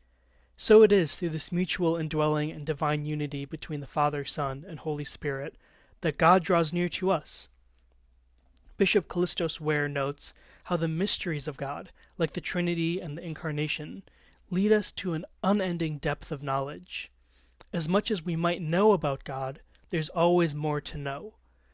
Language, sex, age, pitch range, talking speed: English, male, 20-39, 140-175 Hz, 165 wpm